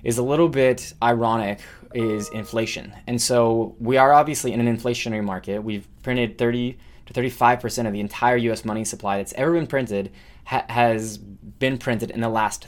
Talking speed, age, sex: 175 wpm, 20-39, male